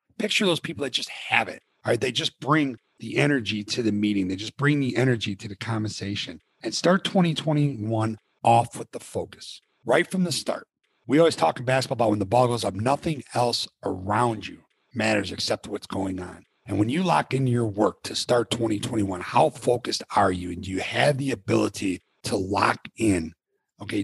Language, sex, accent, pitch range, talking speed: English, male, American, 105-145 Hz, 210 wpm